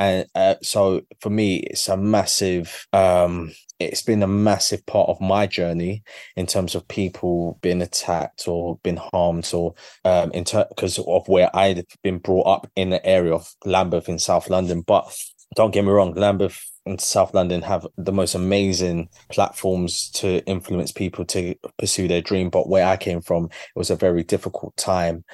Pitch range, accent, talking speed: 85-95 Hz, British, 180 wpm